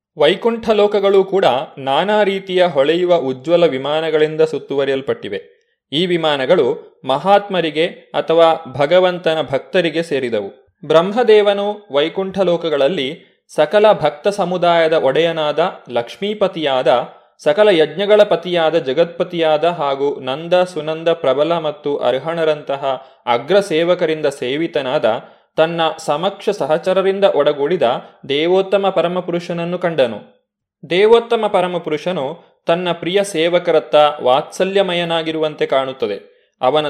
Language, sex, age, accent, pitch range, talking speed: Kannada, male, 20-39, native, 150-195 Hz, 85 wpm